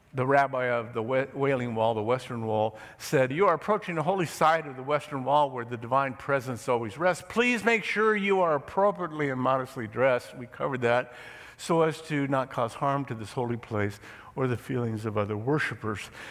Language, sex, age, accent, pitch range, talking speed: English, male, 50-69, American, 125-175 Hz, 200 wpm